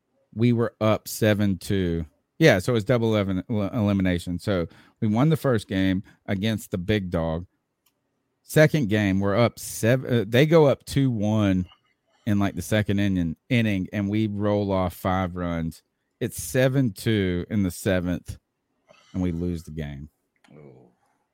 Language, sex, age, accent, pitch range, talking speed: English, male, 40-59, American, 95-120 Hz, 160 wpm